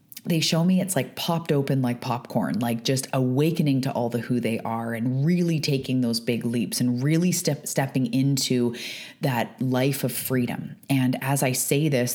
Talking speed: 190 wpm